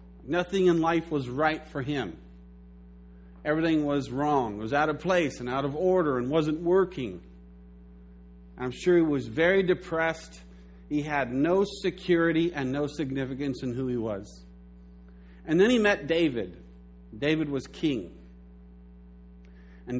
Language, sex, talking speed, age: English, male, 145 wpm, 50-69